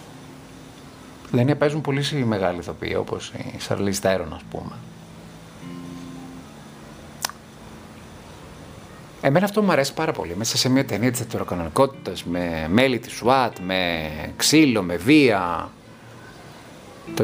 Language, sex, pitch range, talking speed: Greek, male, 90-140 Hz, 110 wpm